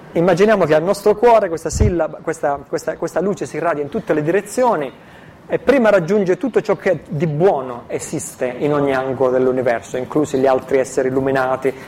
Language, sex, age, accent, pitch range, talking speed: Italian, male, 30-49, native, 140-185 Hz, 175 wpm